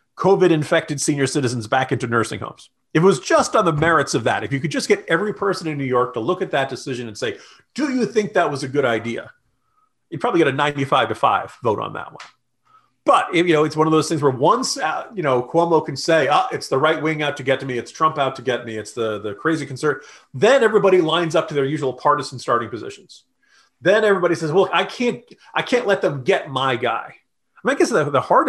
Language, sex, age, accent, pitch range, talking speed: English, male, 40-59, American, 140-220 Hz, 250 wpm